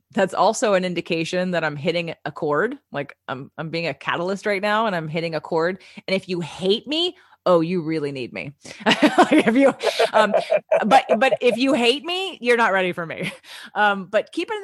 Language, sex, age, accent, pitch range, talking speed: English, female, 30-49, American, 175-225 Hz, 210 wpm